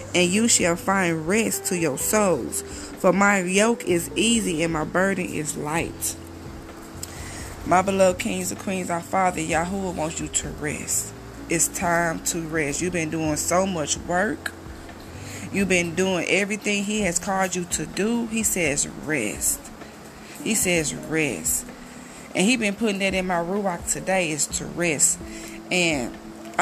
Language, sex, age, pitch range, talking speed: English, female, 20-39, 155-195 Hz, 160 wpm